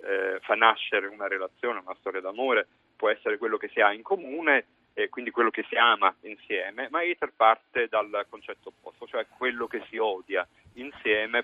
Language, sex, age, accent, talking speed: Italian, male, 40-59, native, 180 wpm